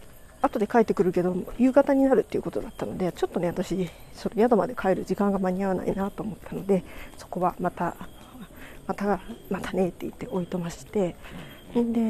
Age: 40-59